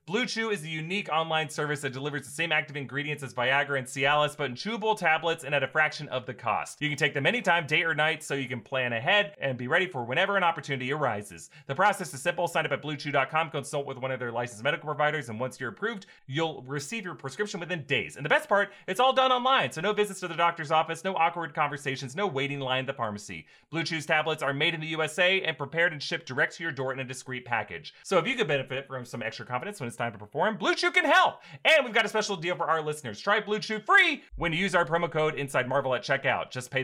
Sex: male